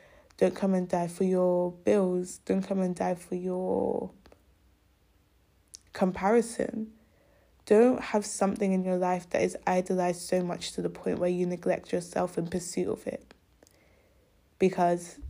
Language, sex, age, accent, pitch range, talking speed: English, female, 10-29, British, 175-205 Hz, 145 wpm